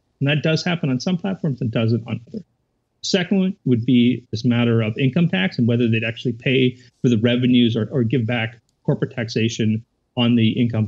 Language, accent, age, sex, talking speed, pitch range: English, American, 40-59, male, 200 wpm, 120-145 Hz